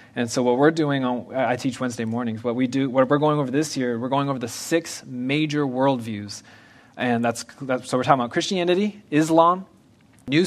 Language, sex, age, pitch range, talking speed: English, male, 20-39, 120-145 Hz, 195 wpm